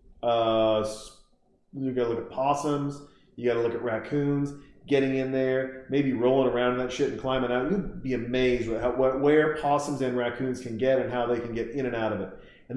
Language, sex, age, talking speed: English, male, 40-59, 215 wpm